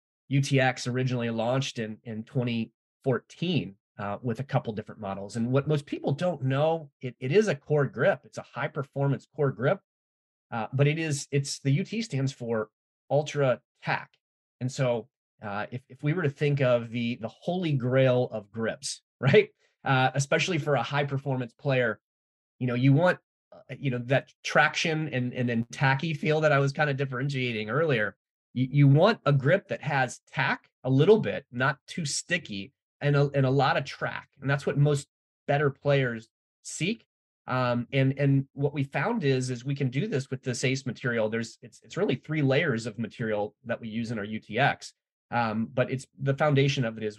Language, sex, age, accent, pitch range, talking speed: English, male, 30-49, American, 115-145 Hz, 195 wpm